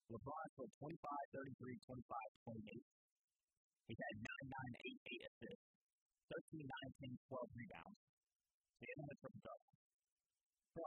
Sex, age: female, 40-59